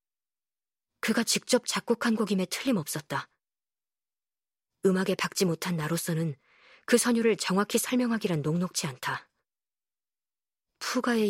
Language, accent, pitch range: Korean, native, 160-205 Hz